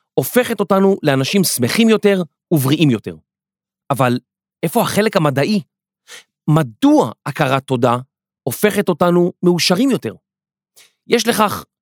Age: 30-49